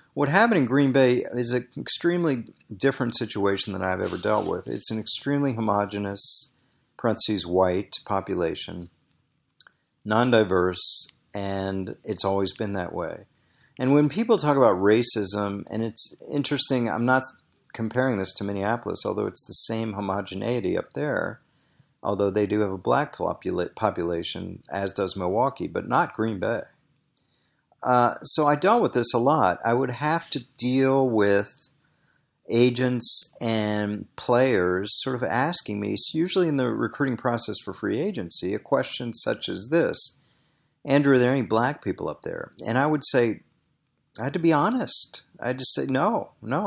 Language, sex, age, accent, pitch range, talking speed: English, male, 50-69, American, 105-140 Hz, 155 wpm